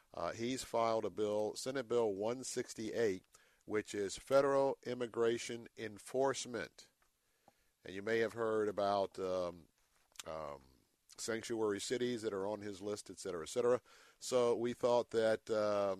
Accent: American